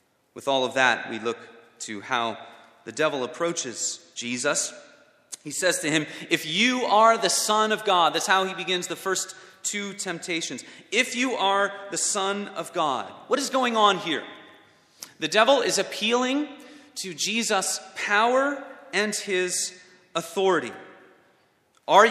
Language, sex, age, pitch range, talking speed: English, male, 30-49, 155-215 Hz, 145 wpm